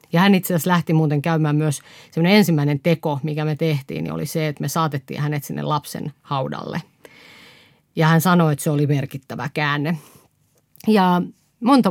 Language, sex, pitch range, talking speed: Finnish, female, 150-180 Hz, 170 wpm